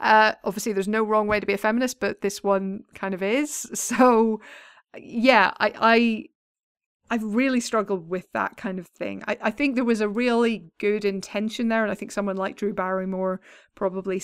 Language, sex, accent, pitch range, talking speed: English, female, British, 190-215 Hz, 185 wpm